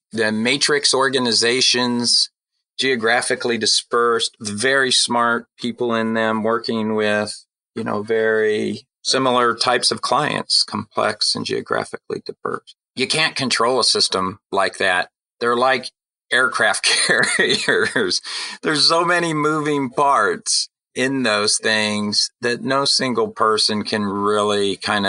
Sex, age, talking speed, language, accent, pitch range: male, 40-59, 115 wpm, English, American, 100-130 Hz